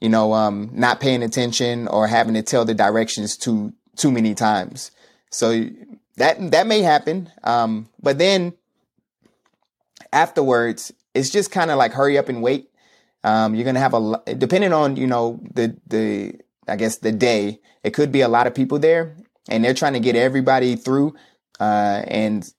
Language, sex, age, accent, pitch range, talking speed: English, male, 30-49, American, 110-130 Hz, 180 wpm